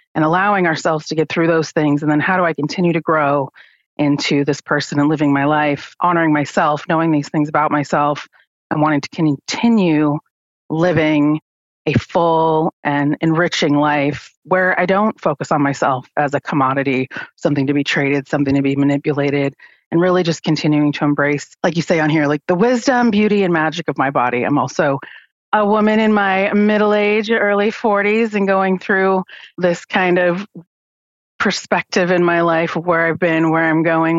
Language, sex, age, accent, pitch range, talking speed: English, female, 30-49, American, 150-190 Hz, 185 wpm